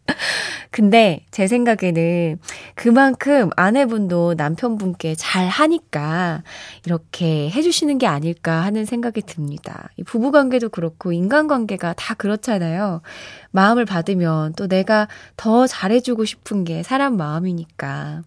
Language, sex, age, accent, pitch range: Korean, female, 20-39, native, 170-245 Hz